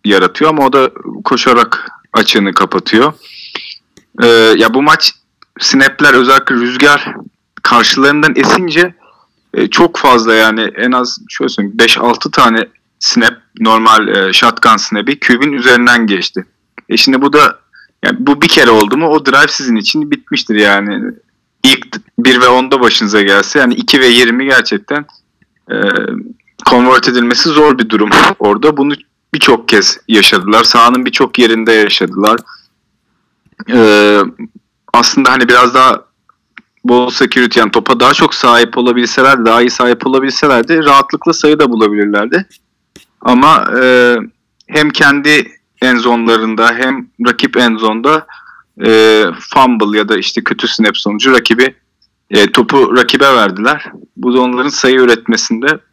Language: Turkish